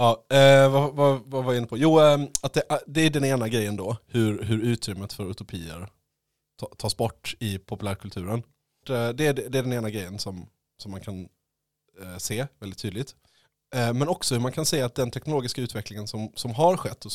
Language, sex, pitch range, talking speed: Swedish, male, 100-125 Hz, 195 wpm